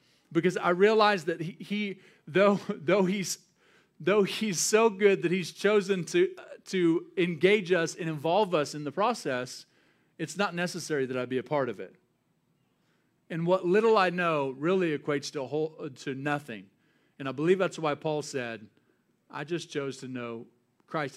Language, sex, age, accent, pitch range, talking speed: English, male, 40-59, American, 125-175 Hz, 170 wpm